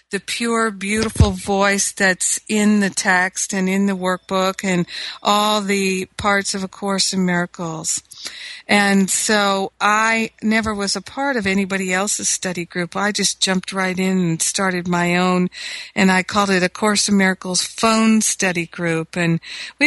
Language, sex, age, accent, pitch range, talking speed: English, female, 50-69, American, 180-205 Hz, 165 wpm